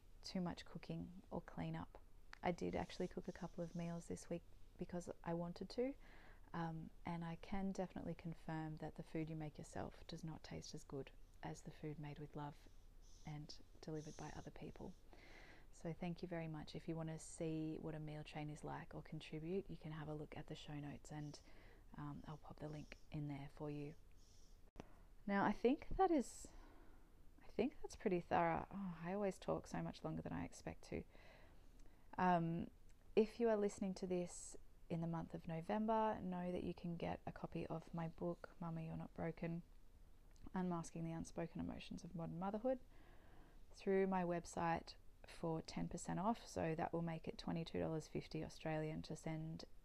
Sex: female